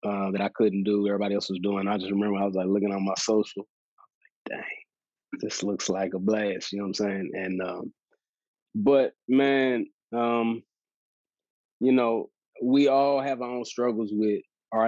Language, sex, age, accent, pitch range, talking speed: English, male, 20-39, American, 100-120 Hz, 190 wpm